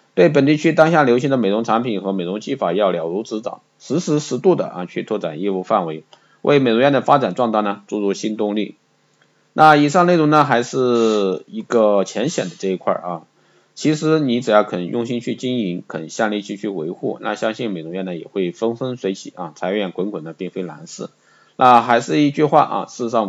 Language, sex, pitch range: Chinese, male, 95-120 Hz